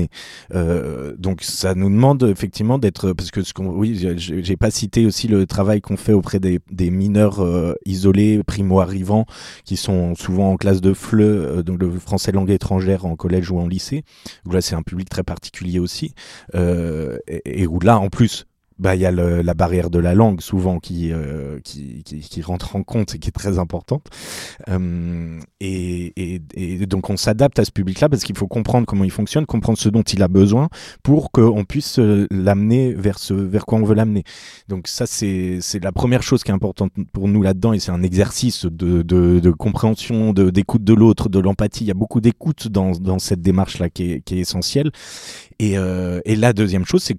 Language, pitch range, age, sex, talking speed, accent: French, 90-105 Hz, 30-49, male, 210 wpm, French